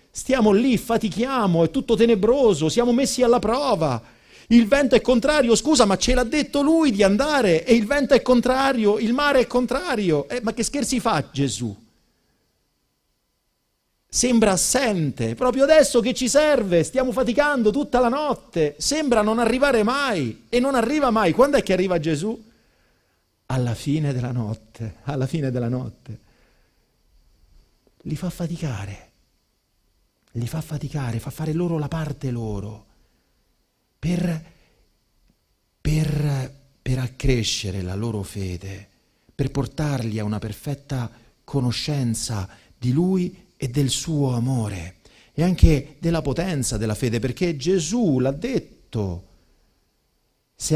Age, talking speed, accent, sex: 50-69, 130 wpm, native, male